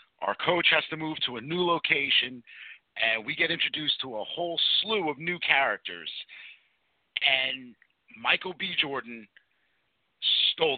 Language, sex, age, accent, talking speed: English, male, 50-69, American, 140 wpm